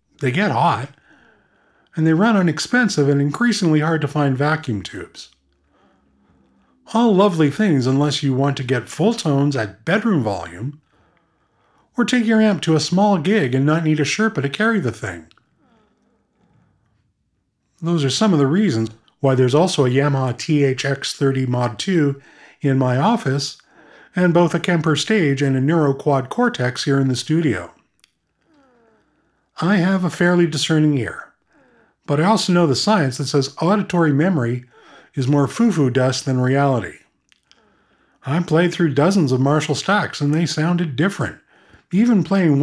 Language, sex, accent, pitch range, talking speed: English, male, American, 130-175 Hz, 155 wpm